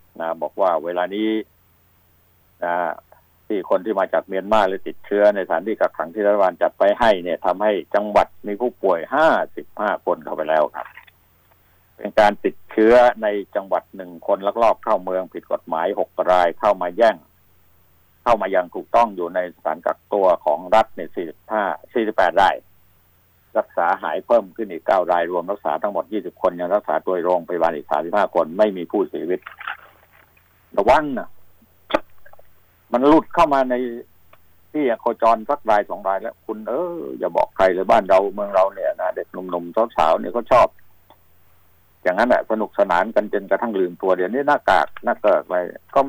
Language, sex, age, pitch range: Thai, male, 60-79, 90-110 Hz